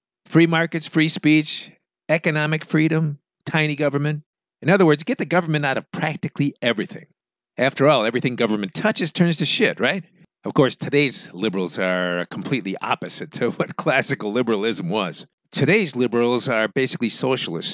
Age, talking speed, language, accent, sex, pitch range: 50-69, 150 wpm, English, American, male, 120-170 Hz